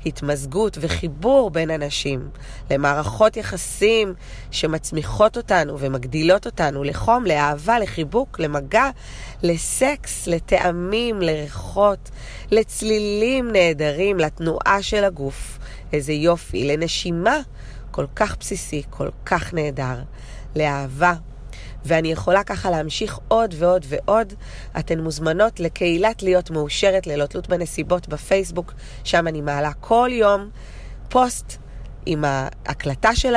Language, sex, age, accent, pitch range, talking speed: Hebrew, female, 30-49, native, 150-210 Hz, 105 wpm